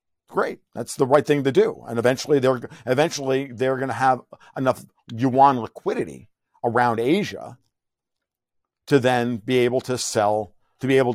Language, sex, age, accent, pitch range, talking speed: English, male, 50-69, American, 105-125 Hz, 155 wpm